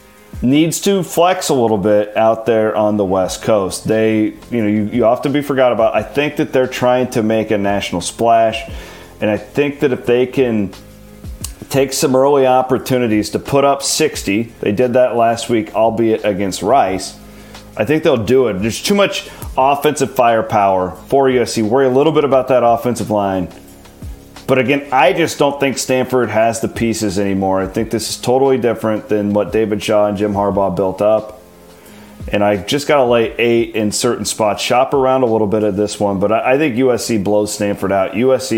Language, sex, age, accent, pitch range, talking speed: English, male, 30-49, American, 100-130 Hz, 195 wpm